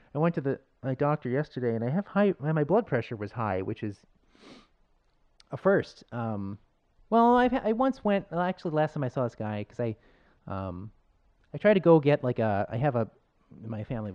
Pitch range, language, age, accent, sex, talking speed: 110-150 Hz, English, 30-49, American, male, 220 wpm